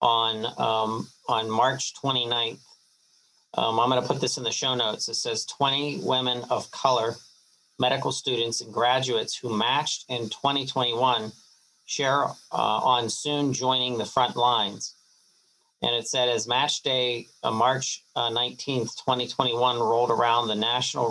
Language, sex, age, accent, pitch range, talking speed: English, male, 40-59, American, 115-130 Hz, 145 wpm